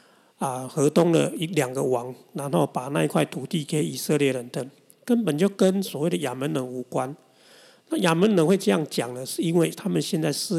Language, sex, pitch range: Chinese, male, 140-175 Hz